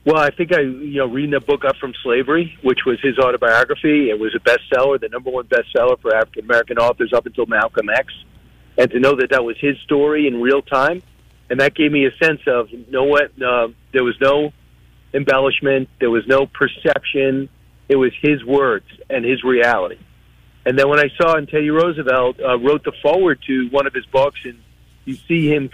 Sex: male